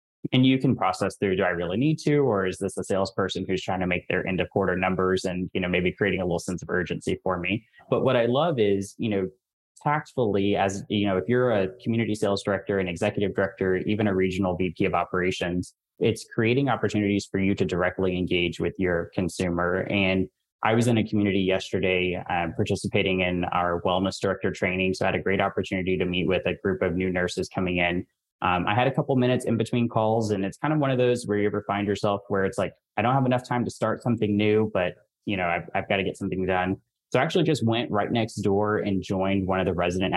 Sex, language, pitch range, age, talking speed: male, English, 90-105 Hz, 20-39, 240 wpm